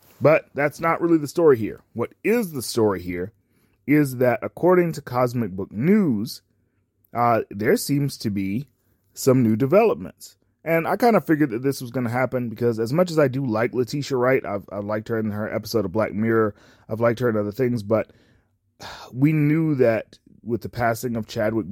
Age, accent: 20-39, American